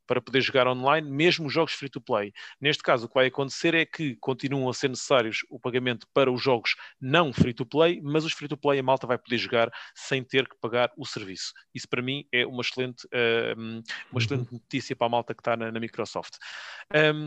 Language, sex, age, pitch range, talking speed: English, male, 30-49, 130-160 Hz, 200 wpm